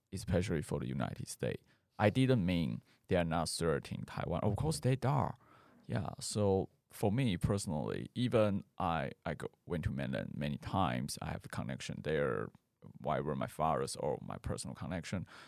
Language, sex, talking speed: English, male, 170 wpm